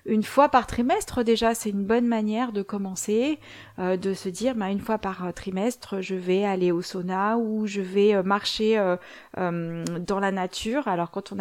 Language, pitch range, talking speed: French, 195-235 Hz, 195 wpm